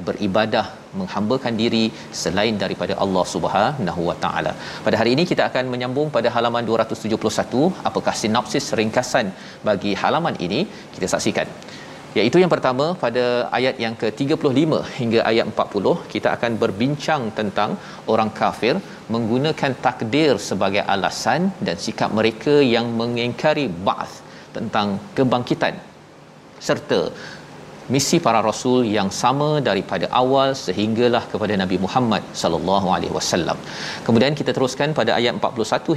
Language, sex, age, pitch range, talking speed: Malayalam, male, 40-59, 110-135 Hz, 120 wpm